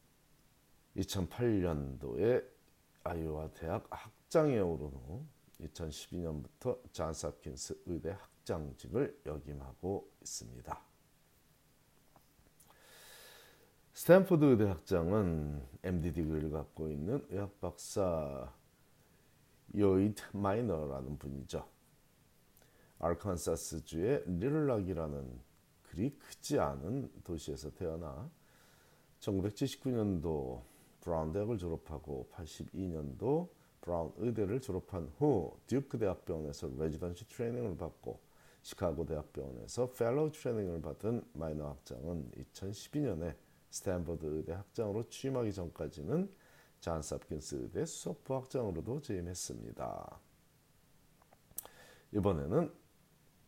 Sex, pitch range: male, 80-115 Hz